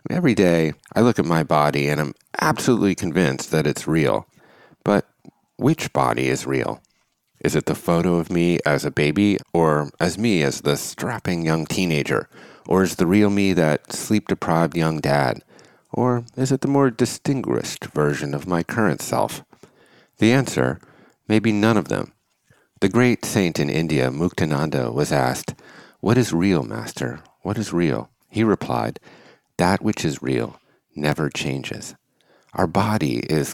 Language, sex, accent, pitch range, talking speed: English, male, American, 75-110 Hz, 160 wpm